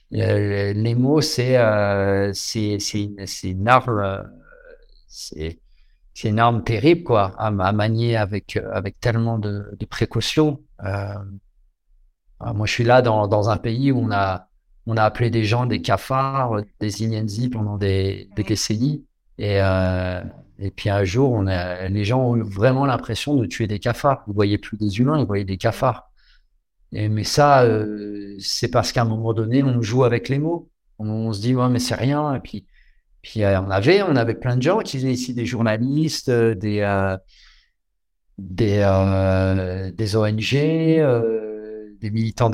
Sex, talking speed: male, 170 wpm